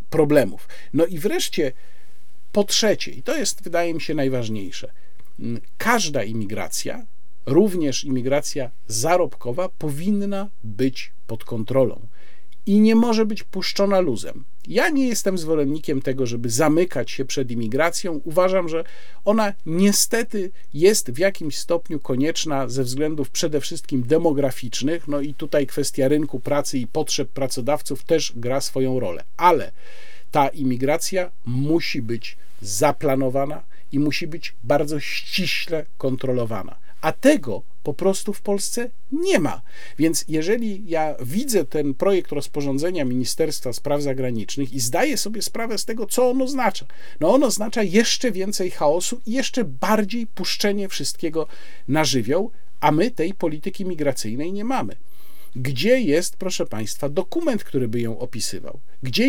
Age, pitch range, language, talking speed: 50-69, 135-195 Hz, Polish, 135 wpm